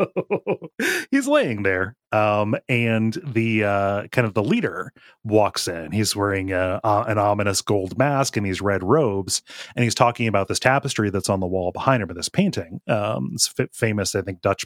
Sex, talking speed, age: male, 190 wpm, 30-49